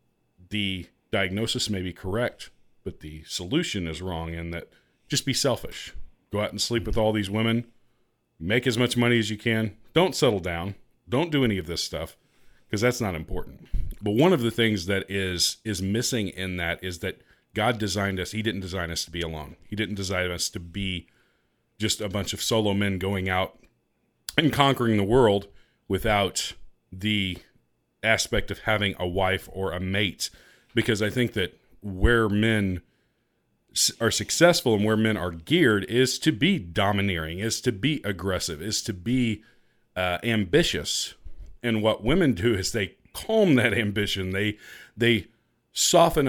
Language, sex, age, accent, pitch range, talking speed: English, male, 40-59, American, 95-115 Hz, 170 wpm